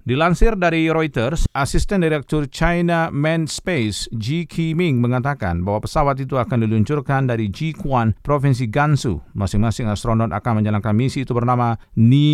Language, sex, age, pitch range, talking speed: Indonesian, male, 40-59, 105-140 Hz, 140 wpm